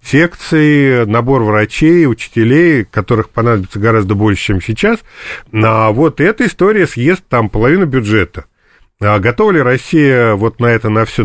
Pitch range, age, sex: 105-135 Hz, 40-59, male